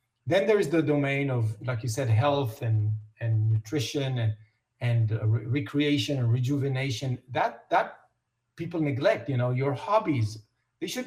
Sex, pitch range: male, 115-150 Hz